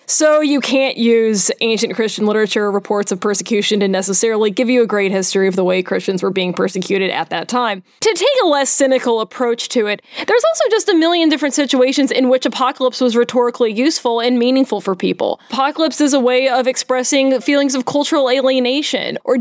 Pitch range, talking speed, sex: 225-270 Hz, 200 wpm, female